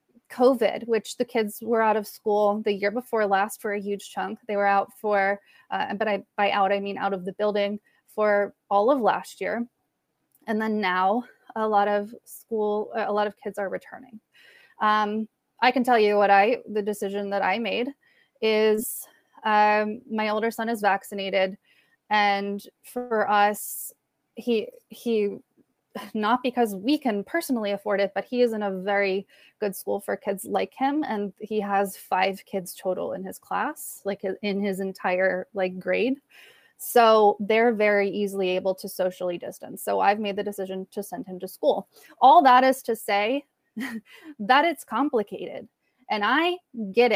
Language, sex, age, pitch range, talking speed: English, female, 20-39, 200-235 Hz, 175 wpm